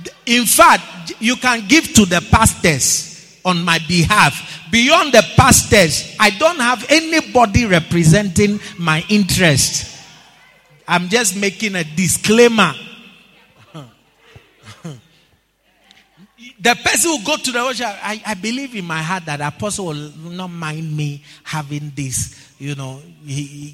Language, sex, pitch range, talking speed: English, male, 150-225 Hz, 130 wpm